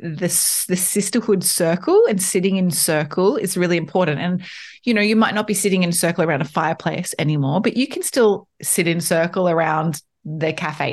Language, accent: English, Australian